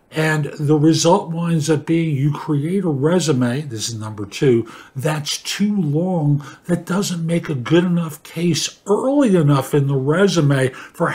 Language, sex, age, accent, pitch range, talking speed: English, male, 50-69, American, 140-175 Hz, 160 wpm